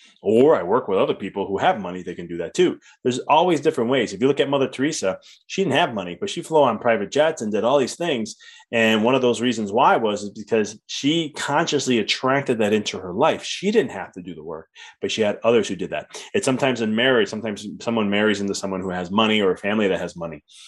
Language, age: English, 30-49